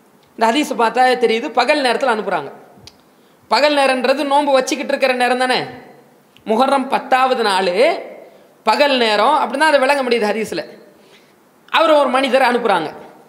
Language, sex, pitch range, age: English, female, 245-305 Hz, 20-39